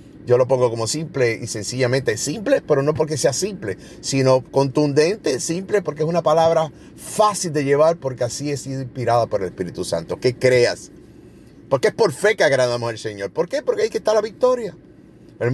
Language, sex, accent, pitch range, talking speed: Spanish, male, Venezuelan, 145-220 Hz, 190 wpm